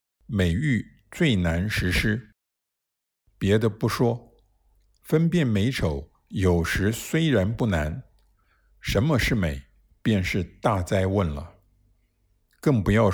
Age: 60-79